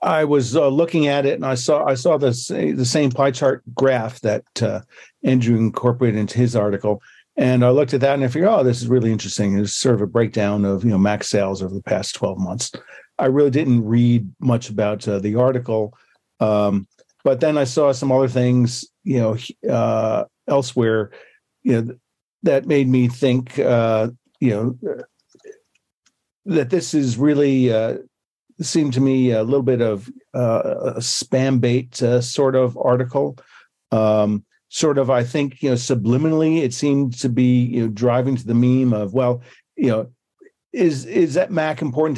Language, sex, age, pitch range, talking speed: English, male, 50-69, 115-140 Hz, 185 wpm